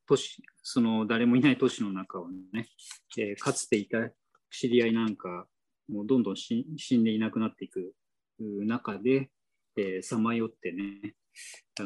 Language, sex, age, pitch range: Japanese, male, 20-39, 110-155 Hz